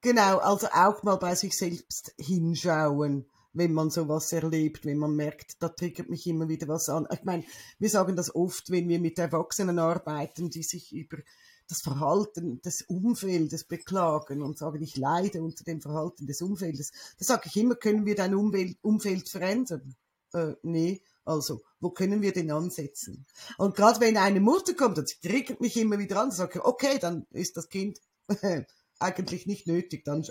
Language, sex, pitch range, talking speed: German, female, 165-215 Hz, 180 wpm